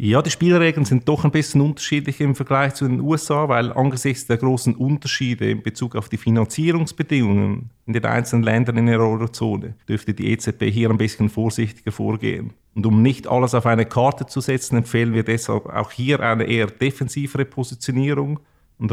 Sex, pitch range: male, 110-125 Hz